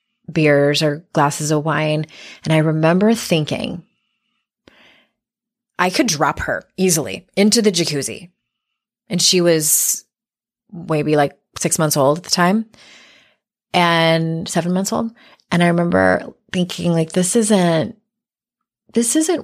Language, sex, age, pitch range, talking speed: English, female, 20-39, 160-225 Hz, 125 wpm